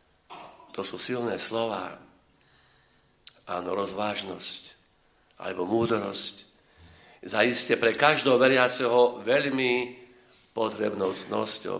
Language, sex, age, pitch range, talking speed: Slovak, male, 50-69, 105-125 Hz, 70 wpm